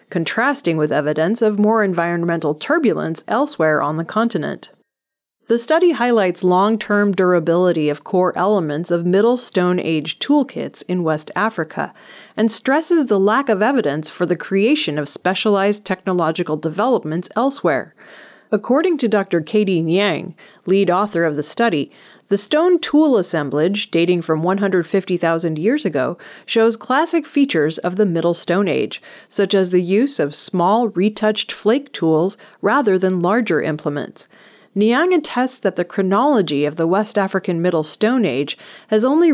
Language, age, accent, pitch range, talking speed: English, 30-49, American, 170-230 Hz, 145 wpm